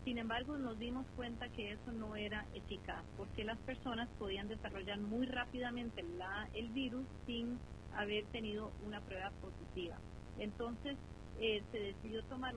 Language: Spanish